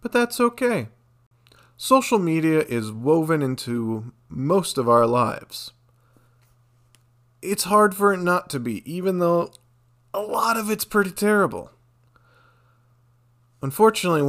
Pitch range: 120-160 Hz